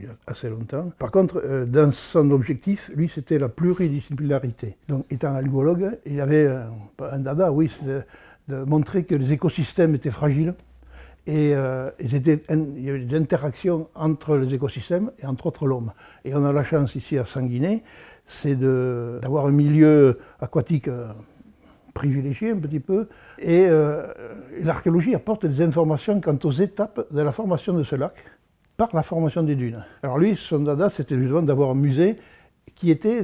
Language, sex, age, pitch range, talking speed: French, male, 60-79, 135-165 Hz, 175 wpm